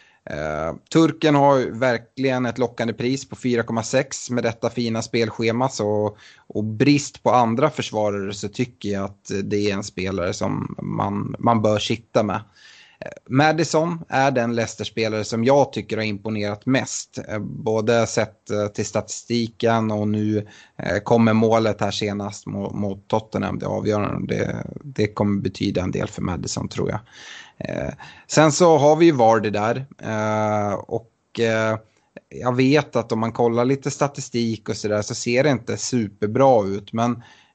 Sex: male